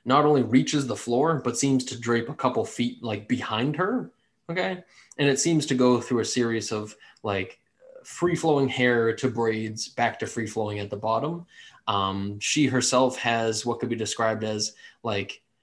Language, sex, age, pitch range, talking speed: English, male, 20-39, 110-135 Hz, 185 wpm